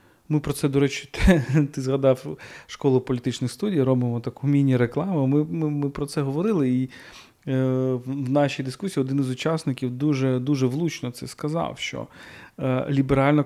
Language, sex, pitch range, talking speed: Ukrainian, male, 130-155 Hz, 150 wpm